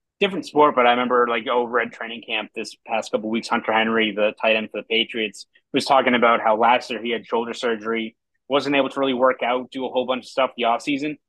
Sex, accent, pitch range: male, American, 110-140 Hz